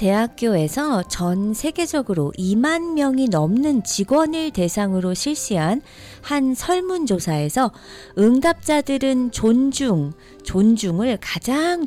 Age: 40-59